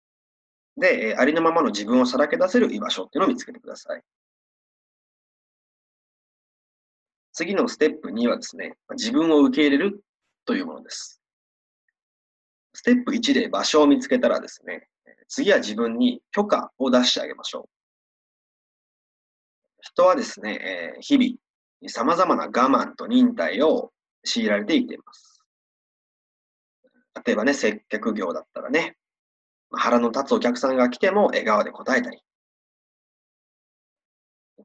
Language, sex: Japanese, male